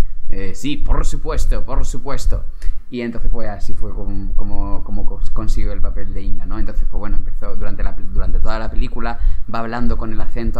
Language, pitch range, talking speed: Spanish, 100-125 Hz, 200 wpm